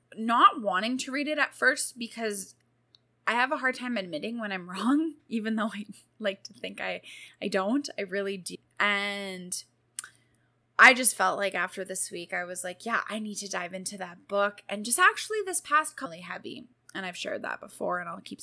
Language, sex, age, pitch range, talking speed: English, female, 10-29, 190-245 Hz, 205 wpm